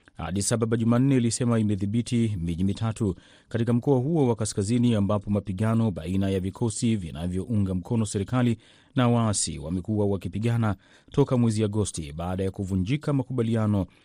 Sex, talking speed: male, 130 wpm